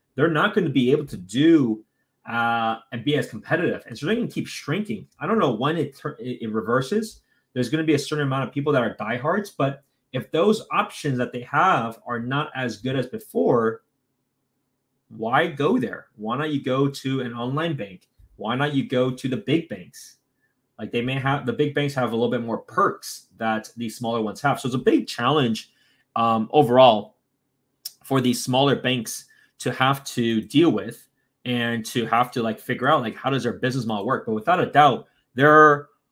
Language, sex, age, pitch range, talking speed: English, male, 30-49, 115-150 Hz, 205 wpm